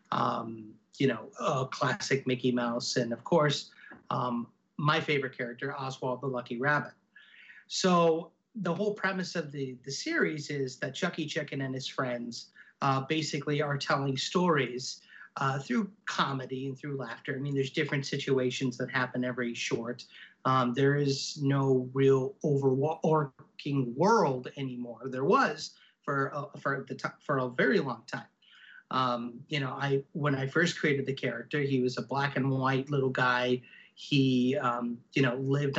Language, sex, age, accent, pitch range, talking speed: English, male, 30-49, American, 130-155 Hz, 165 wpm